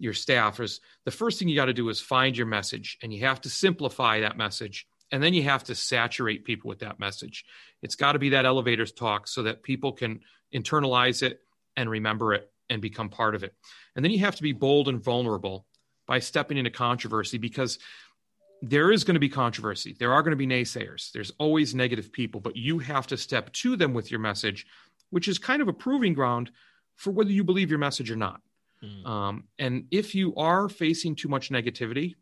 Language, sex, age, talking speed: English, male, 40-59, 215 wpm